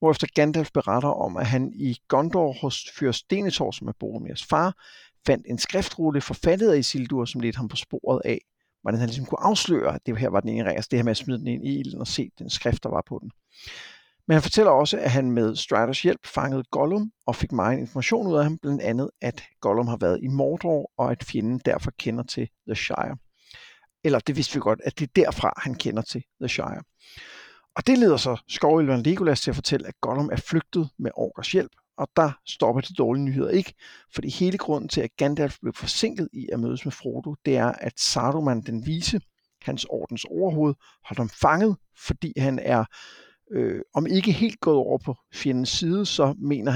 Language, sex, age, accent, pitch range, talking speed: Danish, male, 60-79, native, 120-155 Hz, 215 wpm